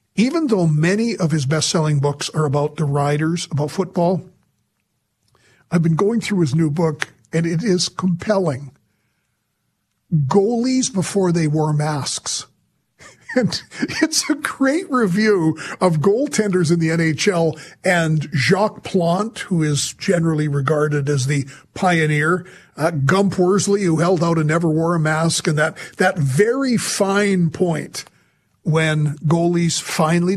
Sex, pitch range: male, 150-190 Hz